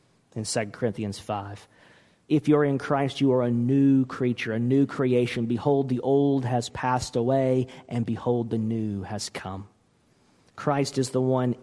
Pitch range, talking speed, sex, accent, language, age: 125-155 Hz, 165 wpm, male, American, English, 40-59